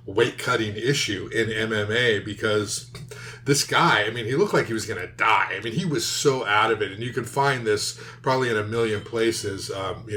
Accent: American